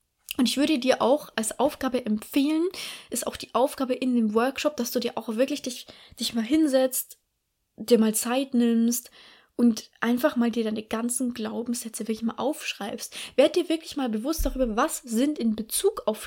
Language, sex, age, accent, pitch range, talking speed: German, female, 20-39, German, 225-280 Hz, 180 wpm